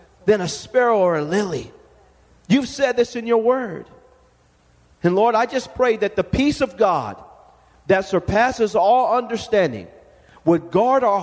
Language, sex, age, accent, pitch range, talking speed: English, male, 40-59, American, 170-240 Hz, 155 wpm